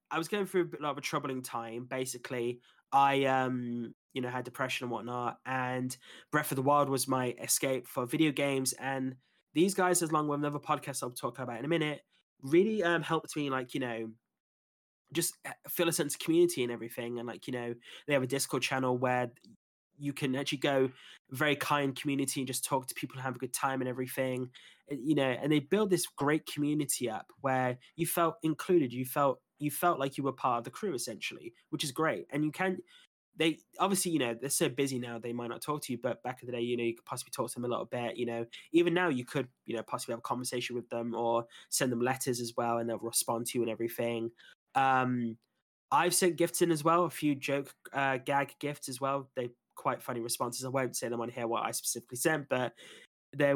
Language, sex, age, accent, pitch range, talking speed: English, male, 20-39, British, 125-150 Hz, 230 wpm